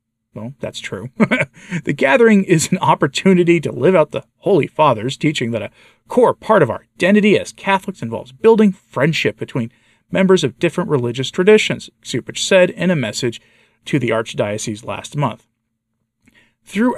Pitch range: 115-160 Hz